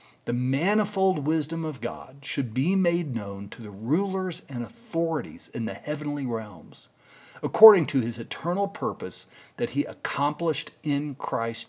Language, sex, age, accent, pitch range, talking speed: English, male, 50-69, American, 125-175 Hz, 145 wpm